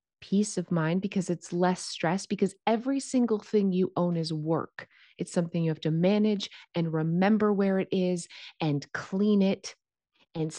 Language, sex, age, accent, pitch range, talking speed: English, female, 30-49, American, 175-210 Hz, 170 wpm